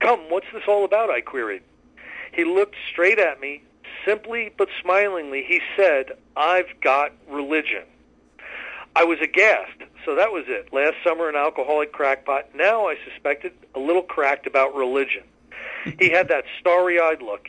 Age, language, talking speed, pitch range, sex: 50-69, English, 155 wpm, 150-200 Hz, male